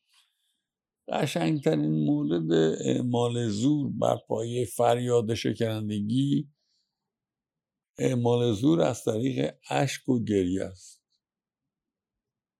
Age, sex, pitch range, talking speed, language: 60-79, male, 100-145 Hz, 70 wpm, Persian